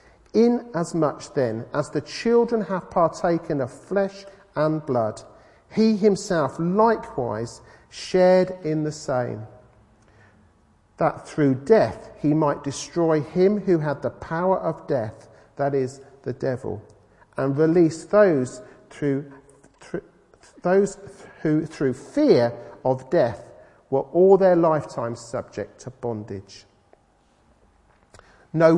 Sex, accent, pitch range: male, British, 125-190 Hz